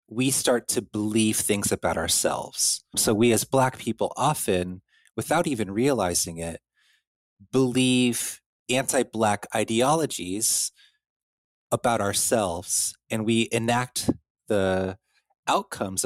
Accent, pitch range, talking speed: American, 95-115 Hz, 100 wpm